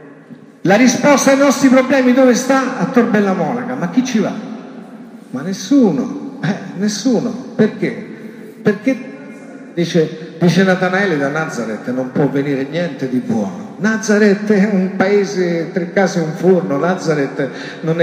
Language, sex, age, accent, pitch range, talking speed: Italian, male, 50-69, native, 150-225 Hz, 135 wpm